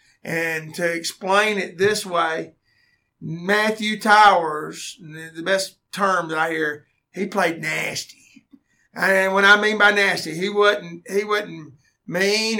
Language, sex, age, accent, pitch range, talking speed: English, male, 50-69, American, 165-200 Hz, 140 wpm